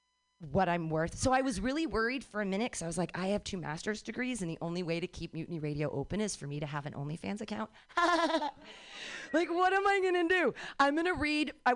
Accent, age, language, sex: American, 30-49, English, female